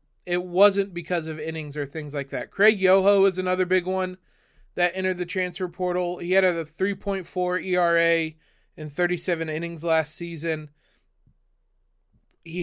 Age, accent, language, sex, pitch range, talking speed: 30-49, American, English, male, 165-195 Hz, 145 wpm